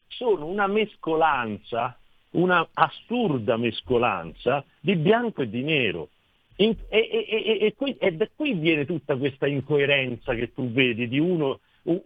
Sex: male